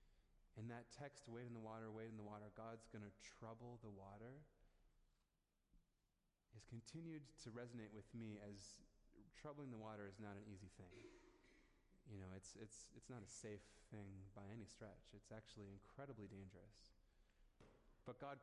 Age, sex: 30-49, male